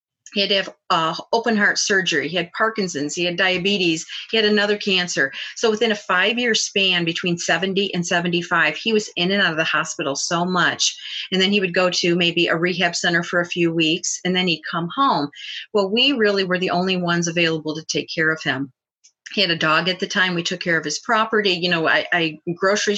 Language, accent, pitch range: English, American, 170-205 Hz